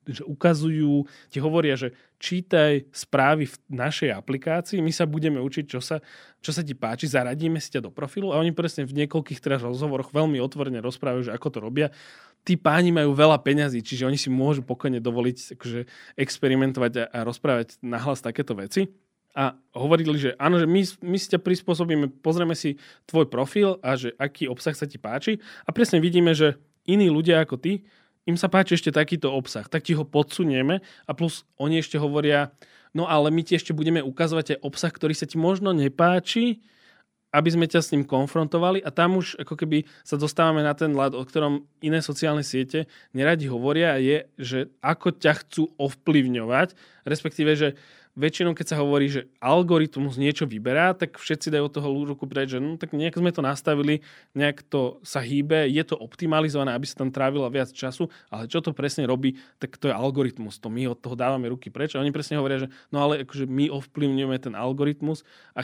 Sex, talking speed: male, 195 wpm